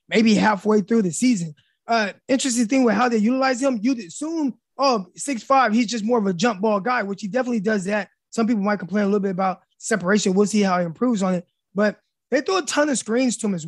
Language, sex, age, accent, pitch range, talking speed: English, male, 20-39, American, 200-240 Hz, 255 wpm